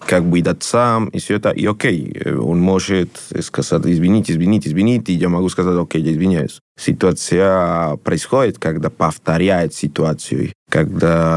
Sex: male